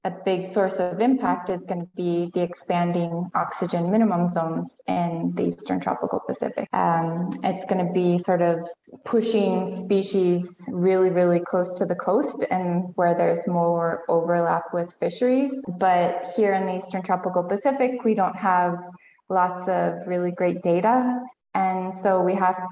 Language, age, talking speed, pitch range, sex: English, 20-39, 160 wpm, 175-200 Hz, female